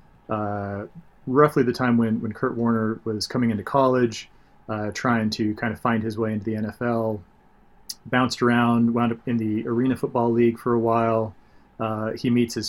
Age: 30-49